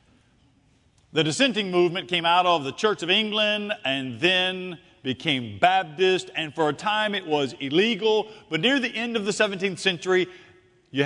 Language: English